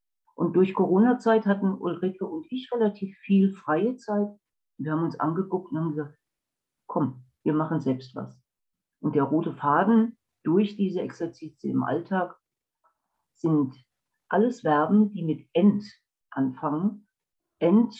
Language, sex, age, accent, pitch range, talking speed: German, female, 50-69, German, 150-200 Hz, 135 wpm